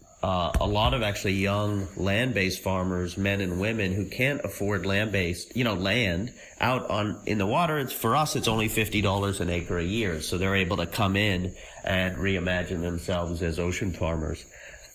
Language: English